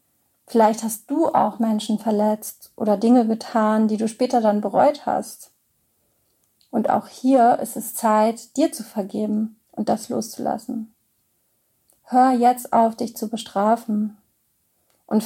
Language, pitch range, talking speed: German, 215-245 Hz, 135 wpm